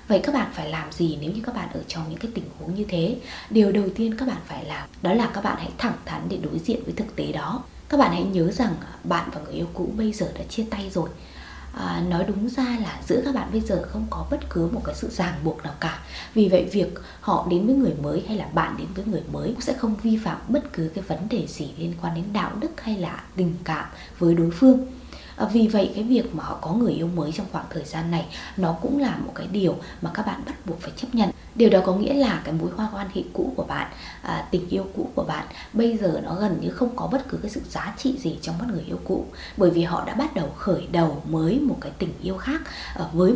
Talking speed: 270 wpm